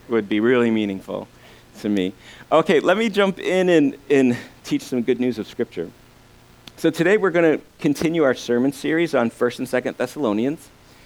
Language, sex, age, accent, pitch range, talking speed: English, male, 50-69, American, 115-150 Hz, 180 wpm